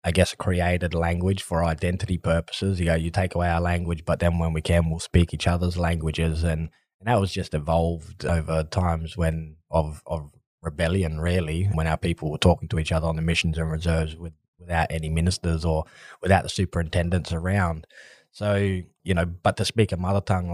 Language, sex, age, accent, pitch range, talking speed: English, male, 20-39, Australian, 80-90 Hz, 200 wpm